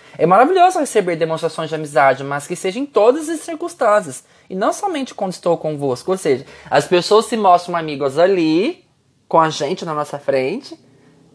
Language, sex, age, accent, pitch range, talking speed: Portuguese, male, 20-39, Brazilian, 140-210 Hz, 175 wpm